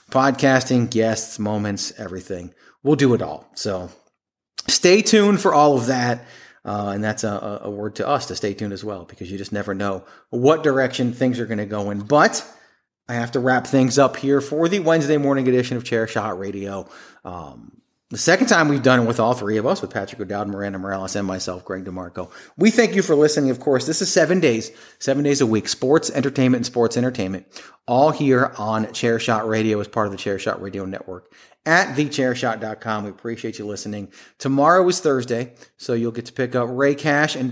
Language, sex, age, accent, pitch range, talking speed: English, male, 30-49, American, 105-140 Hz, 205 wpm